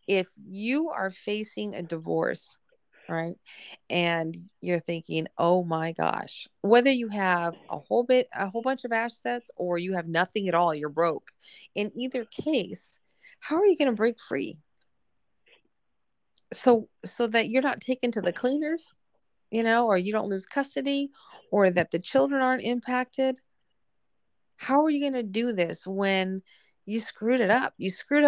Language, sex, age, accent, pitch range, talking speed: English, female, 40-59, American, 190-265 Hz, 165 wpm